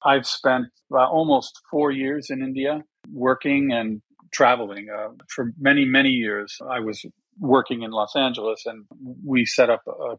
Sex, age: male, 50-69